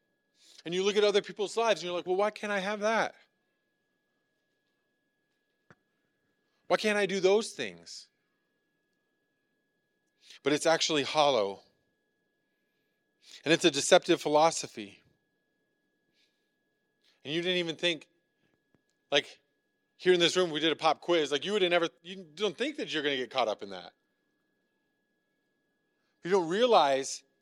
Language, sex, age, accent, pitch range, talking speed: English, male, 30-49, American, 140-185 Hz, 140 wpm